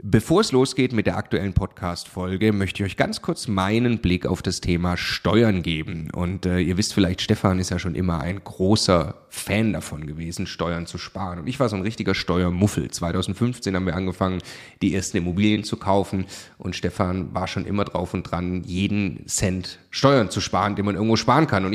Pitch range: 90-105 Hz